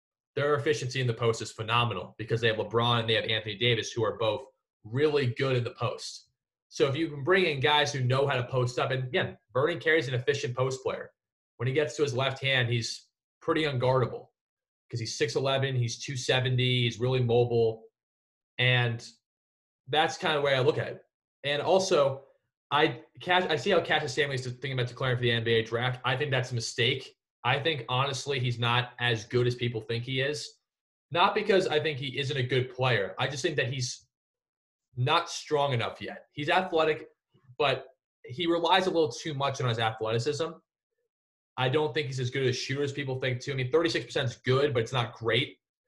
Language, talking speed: English, 205 wpm